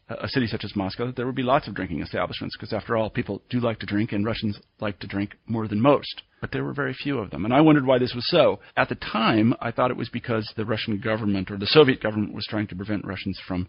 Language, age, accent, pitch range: English, 40-59, American, 105-120 Hz